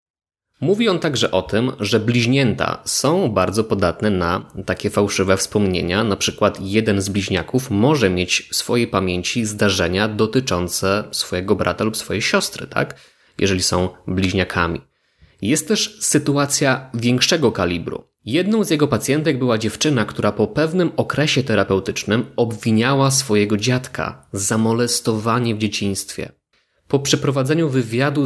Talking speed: 125 wpm